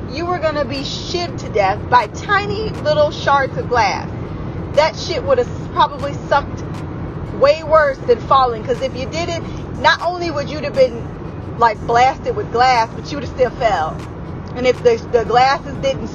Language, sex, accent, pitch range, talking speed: English, female, American, 225-315 Hz, 180 wpm